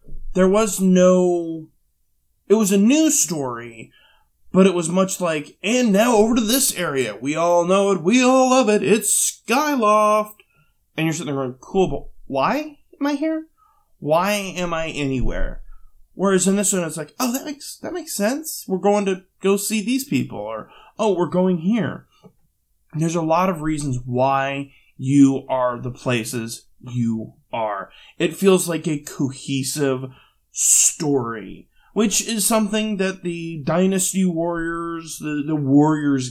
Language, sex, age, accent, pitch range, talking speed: English, male, 20-39, American, 140-205 Hz, 160 wpm